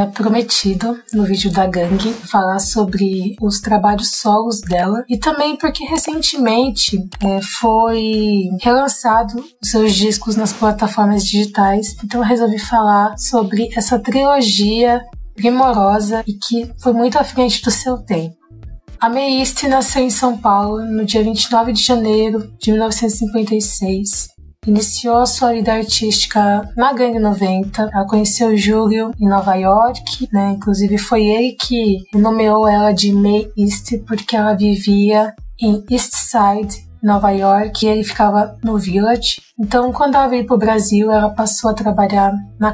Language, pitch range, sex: Portuguese, 205-235 Hz, female